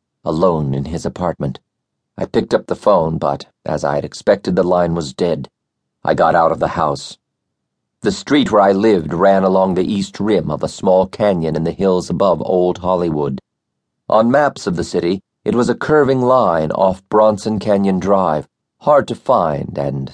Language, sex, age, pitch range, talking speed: English, male, 50-69, 80-100 Hz, 185 wpm